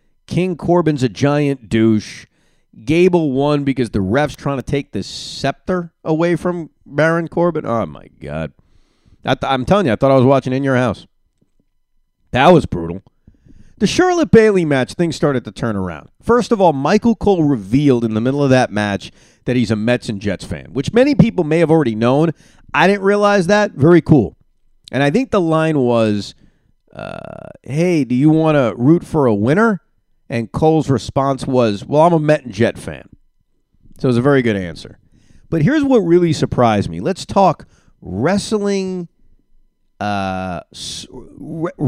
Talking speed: 175 wpm